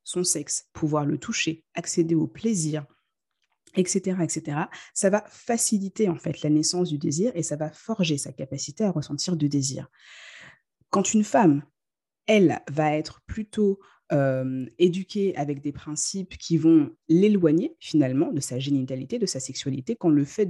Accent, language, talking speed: French, French, 160 wpm